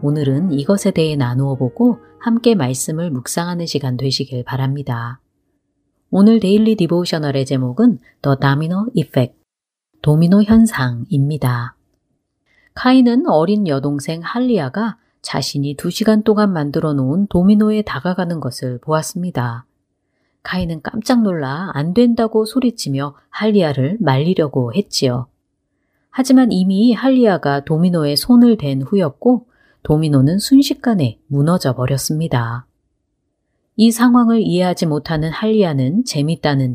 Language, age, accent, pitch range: Korean, 30-49, native, 135-210 Hz